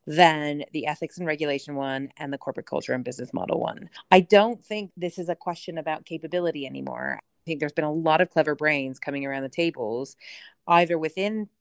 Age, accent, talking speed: 30-49, American, 200 wpm